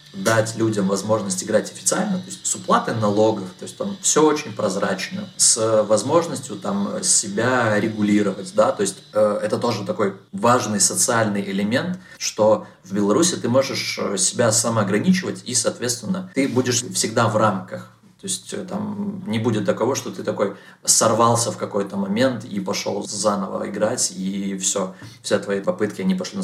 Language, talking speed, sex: Russian, 155 wpm, male